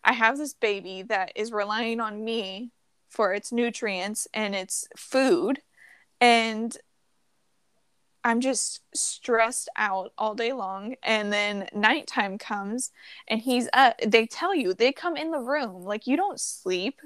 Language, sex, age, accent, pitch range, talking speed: English, female, 20-39, American, 205-250 Hz, 145 wpm